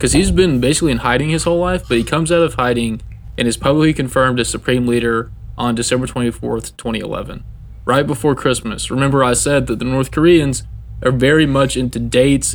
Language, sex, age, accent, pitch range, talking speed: English, male, 20-39, American, 115-135 Hz, 195 wpm